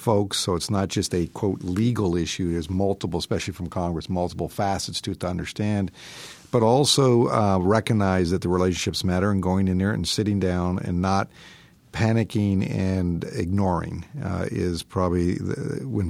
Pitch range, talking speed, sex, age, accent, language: 90-110 Hz, 170 wpm, male, 50-69, American, English